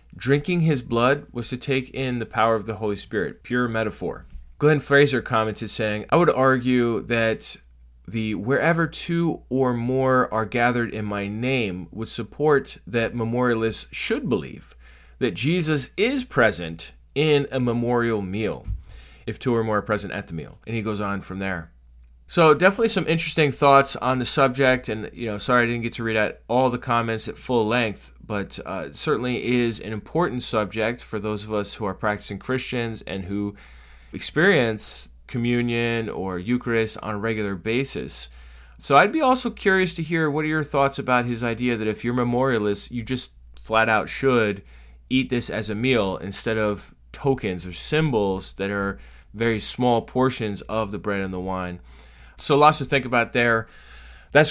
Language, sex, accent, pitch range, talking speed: English, male, American, 100-130 Hz, 180 wpm